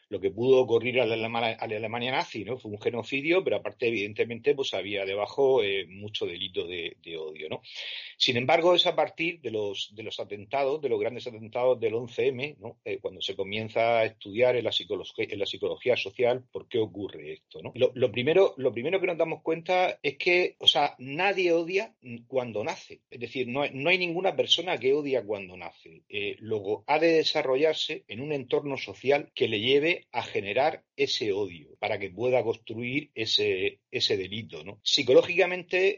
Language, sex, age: Spanish, male, 40-59